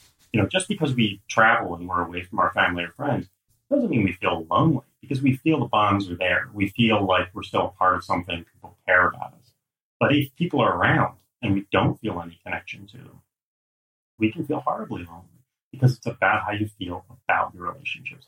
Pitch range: 90-110 Hz